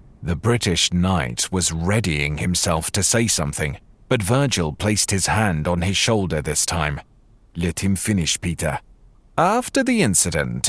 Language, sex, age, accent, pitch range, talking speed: English, male, 40-59, British, 85-120 Hz, 145 wpm